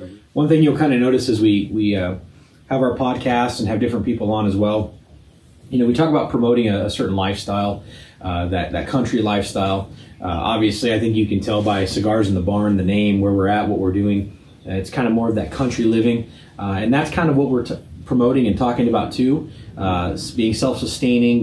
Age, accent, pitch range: 30-49, American, 100-120 Hz